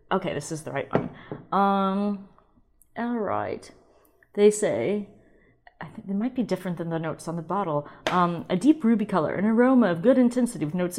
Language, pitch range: English, 165-235 Hz